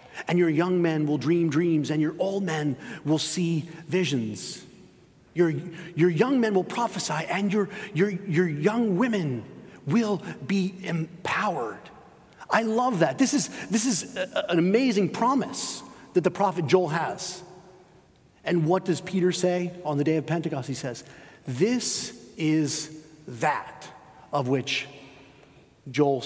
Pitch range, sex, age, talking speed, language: 155-195 Hz, male, 40-59, 145 wpm, English